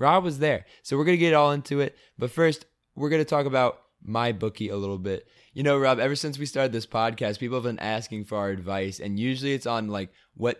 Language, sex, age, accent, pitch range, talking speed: English, male, 20-39, American, 105-125 Hz, 245 wpm